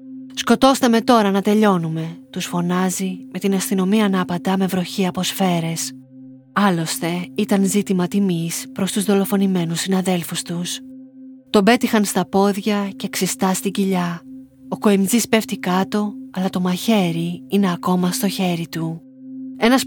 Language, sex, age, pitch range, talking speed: Greek, female, 20-39, 175-215 Hz, 140 wpm